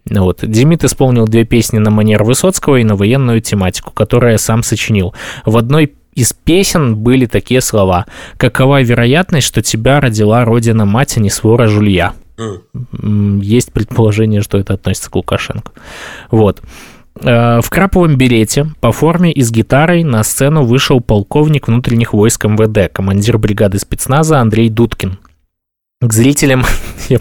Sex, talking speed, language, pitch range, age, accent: male, 140 wpm, Russian, 105-130 Hz, 20-39, native